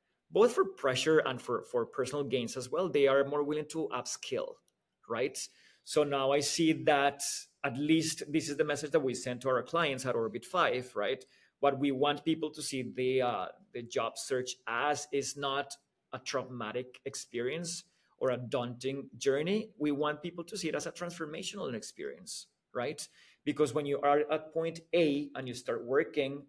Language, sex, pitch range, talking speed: English, male, 125-150 Hz, 185 wpm